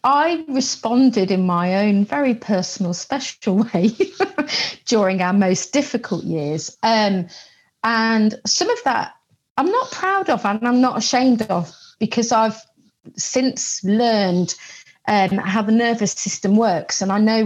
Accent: British